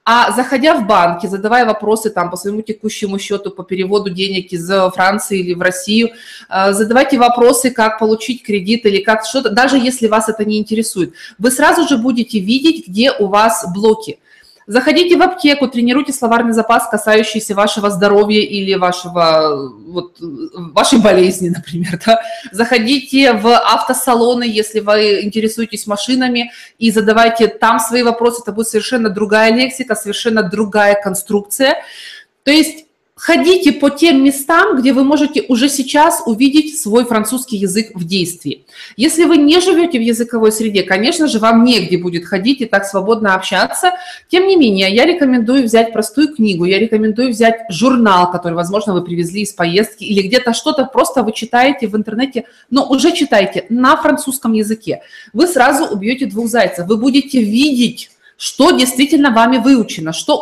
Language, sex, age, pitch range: Russian, female, 20-39, 205-260 Hz